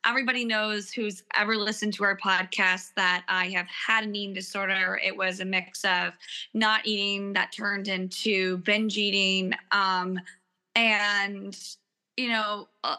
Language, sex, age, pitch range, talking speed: English, female, 20-39, 195-225 Hz, 145 wpm